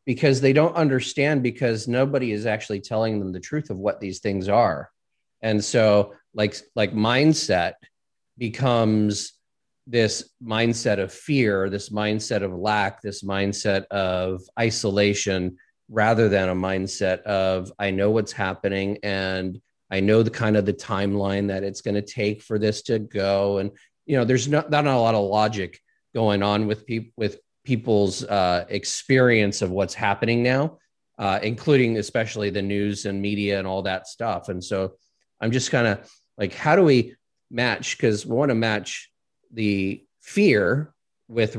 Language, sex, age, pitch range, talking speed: English, male, 30-49, 100-120 Hz, 165 wpm